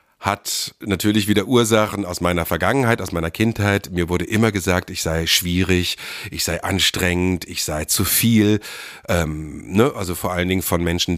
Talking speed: 165 wpm